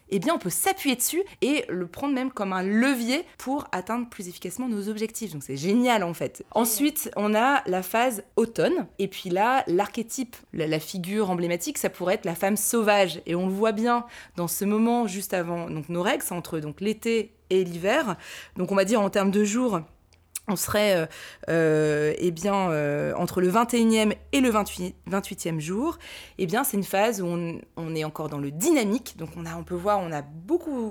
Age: 20-39